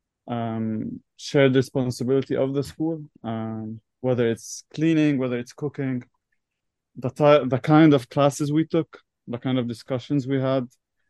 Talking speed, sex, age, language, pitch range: 145 wpm, male, 20-39, English, 120-145 Hz